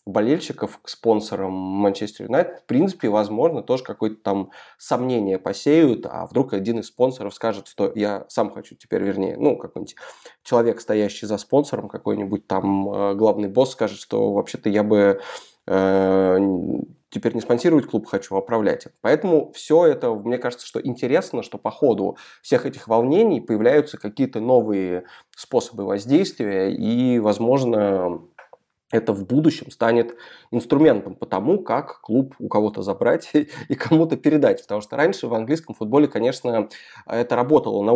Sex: male